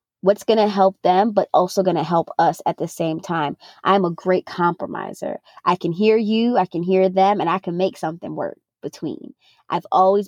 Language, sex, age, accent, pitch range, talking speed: English, female, 20-39, American, 175-200 Hz, 210 wpm